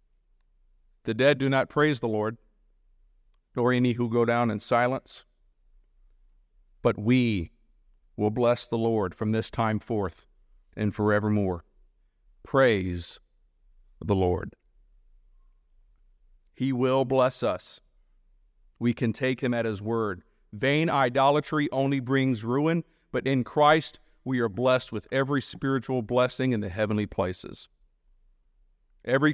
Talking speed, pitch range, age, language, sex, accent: 125 wpm, 100-130 Hz, 50-69, English, male, American